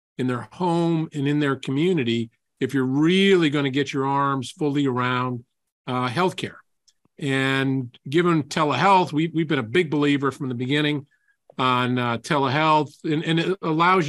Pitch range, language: 130-165 Hz, English